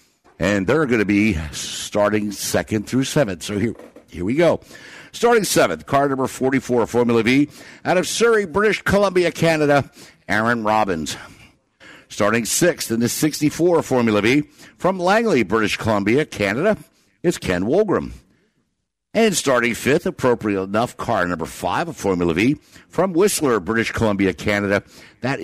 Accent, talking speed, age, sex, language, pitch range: American, 140 wpm, 60-79, male, English, 105-150 Hz